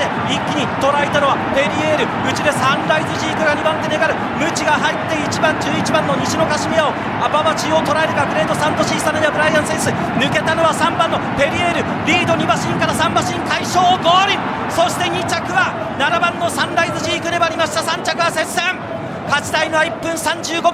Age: 40-59